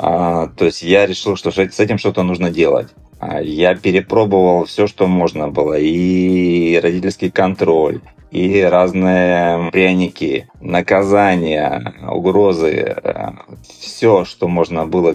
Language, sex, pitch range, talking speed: Russian, male, 85-95 Hz, 110 wpm